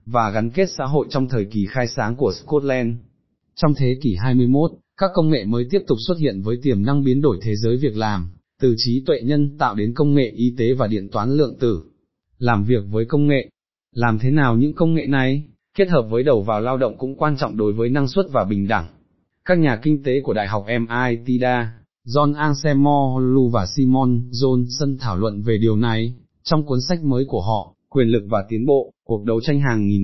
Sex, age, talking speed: male, 20-39, 225 wpm